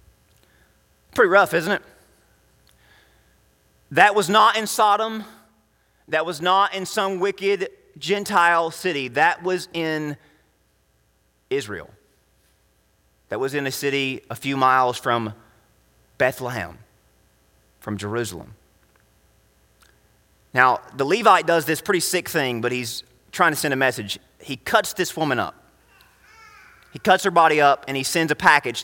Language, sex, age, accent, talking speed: English, male, 30-49, American, 130 wpm